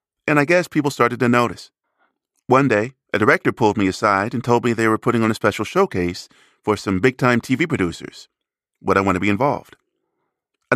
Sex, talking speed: male, 200 wpm